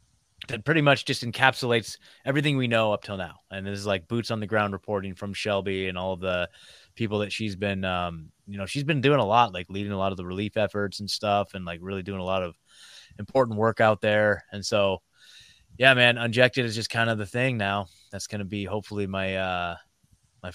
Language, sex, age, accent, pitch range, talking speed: English, male, 20-39, American, 95-115 Hz, 230 wpm